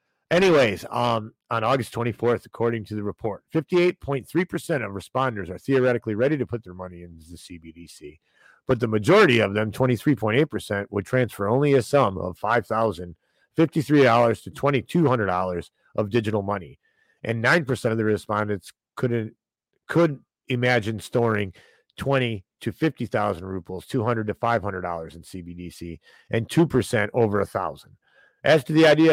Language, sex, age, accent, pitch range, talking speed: English, male, 40-59, American, 110-170 Hz, 135 wpm